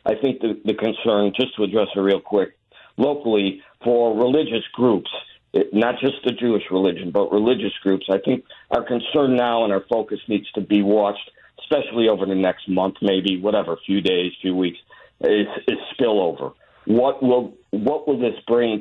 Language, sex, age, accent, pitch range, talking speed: English, male, 50-69, American, 100-130 Hz, 180 wpm